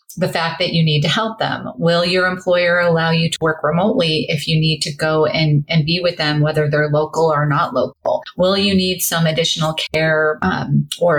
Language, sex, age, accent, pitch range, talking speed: English, female, 30-49, American, 150-180 Hz, 215 wpm